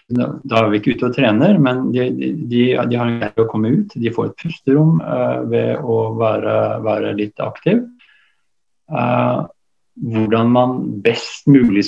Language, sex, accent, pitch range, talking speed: English, male, Norwegian, 105-125 Hz, 165 wpm